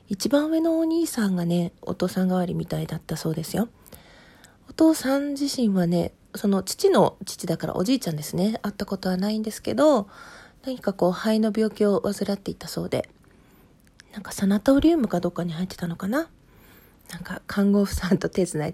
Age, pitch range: 40-59, 175-230 Hz